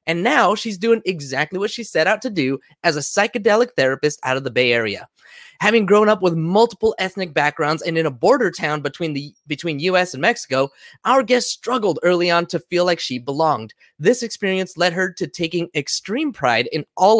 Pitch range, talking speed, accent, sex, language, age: 150-210 Hz, 200 wpm, American, male, English, 20-39